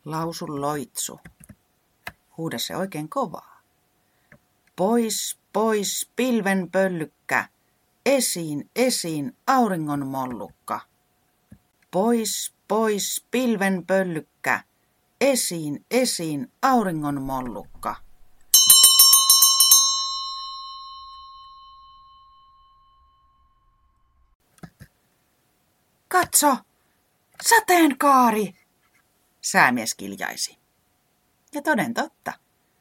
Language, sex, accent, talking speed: Finnish, female, native, 50 wpm